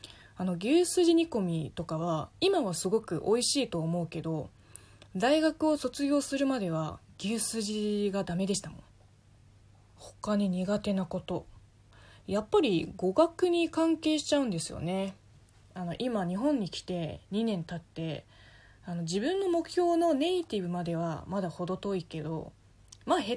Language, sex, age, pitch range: Japanese, female, 20-39, 155-245 Hz